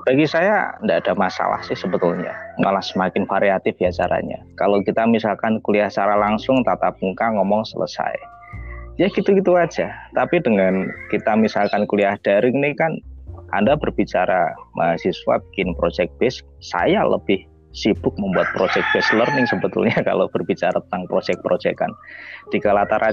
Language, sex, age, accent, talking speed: Indonesian, male, 20-39, native, 140 wpm